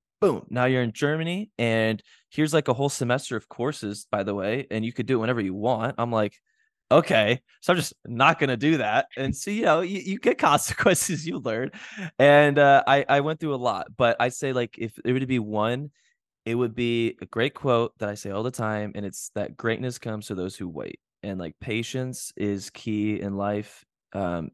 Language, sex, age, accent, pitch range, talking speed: English, male, 20-39, American, 105-130 Hz, 225 wpm